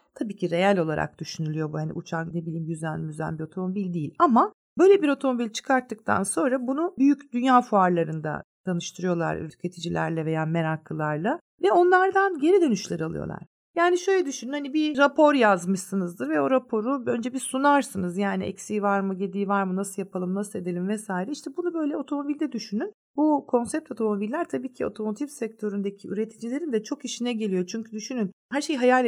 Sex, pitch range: female, 180-255 Hz